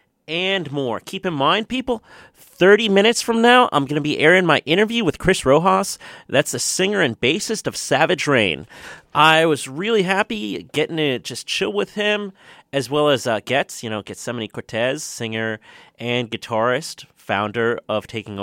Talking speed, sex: 175 wpm, male